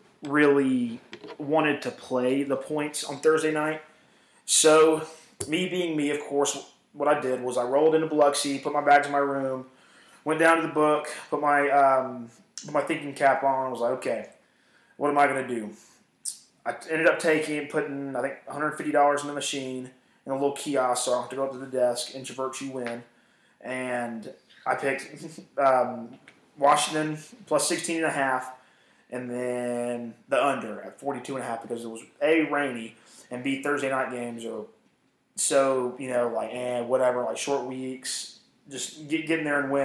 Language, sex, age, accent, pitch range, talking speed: English, male, 20-39, American, 125-150 Hz, 185 wpm